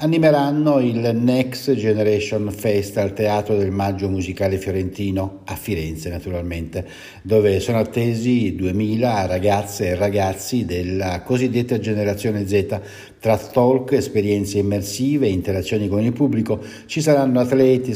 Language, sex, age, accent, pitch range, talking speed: Italian, male, 60-79, native, 100-130 Hz, 120 wpm